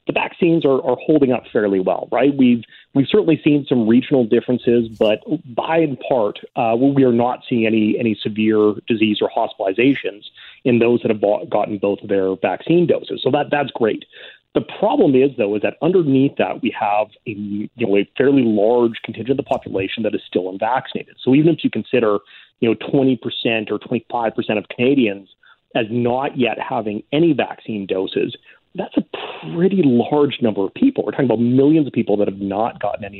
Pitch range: 105-140 Hz